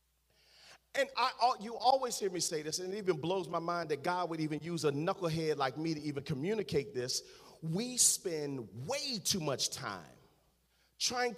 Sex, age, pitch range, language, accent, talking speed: male, 40-59, 160-245 Hz, English, American, 180 wpm